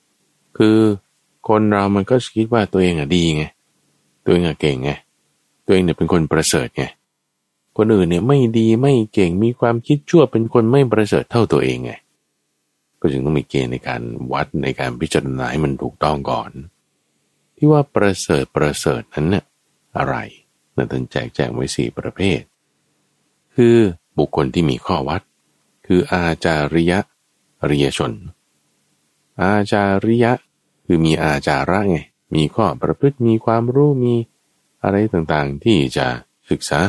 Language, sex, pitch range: Thai, male, 70-110 Hz